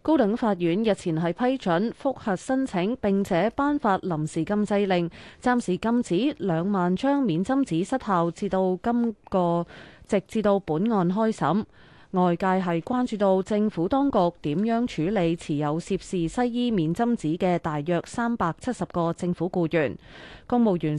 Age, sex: 20-39, female